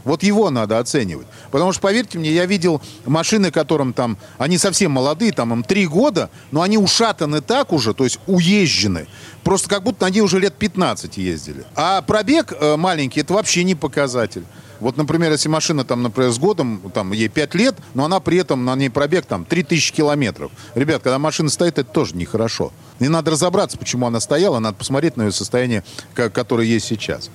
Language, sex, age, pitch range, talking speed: Russian, male, 40-59, 115-175 Hz, 190 wpm